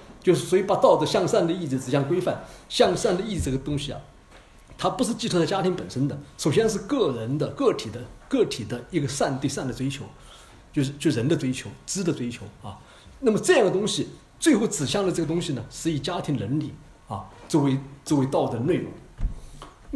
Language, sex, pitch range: Chinese, male, 125-170 Hz